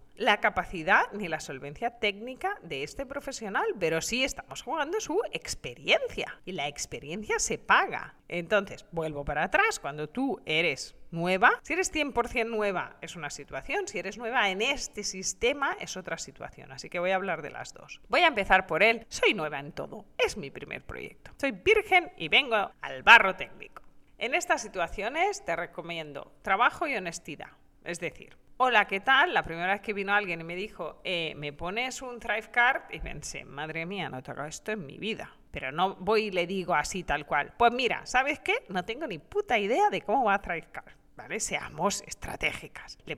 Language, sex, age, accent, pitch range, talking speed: Spanish, female, 40-59, Spanish, 170-245 Hz, 190 wpm